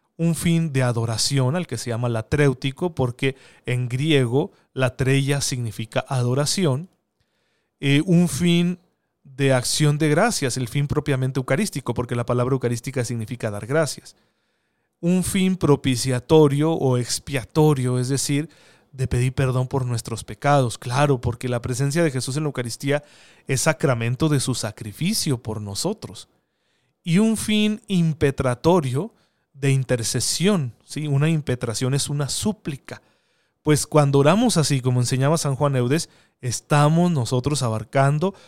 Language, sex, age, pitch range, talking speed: Spanish, male, 40-59, 125-155 Hz, 135 wpm